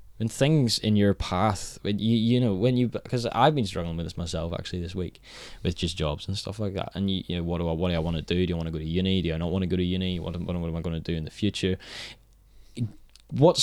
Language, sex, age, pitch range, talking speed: English, male, 10-29, 90-120 Hz, 290 wpm